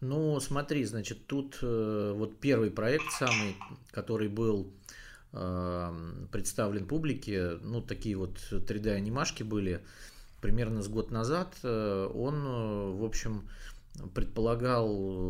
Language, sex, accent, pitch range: Russian, male, native, 95-120 Hz